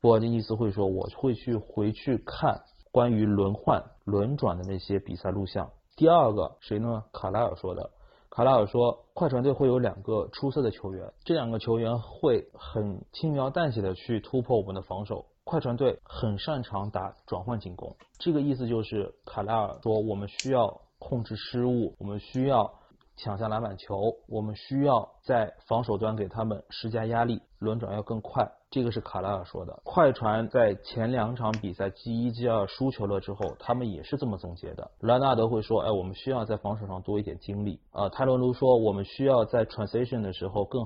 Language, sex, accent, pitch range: Chinese, male, native, 100-120 Hz